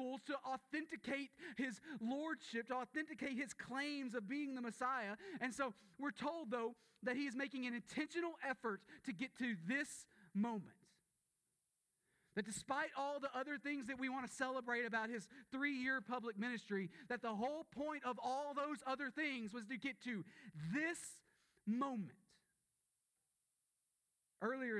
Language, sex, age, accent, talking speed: English, male, 30-49, American, 150 wpm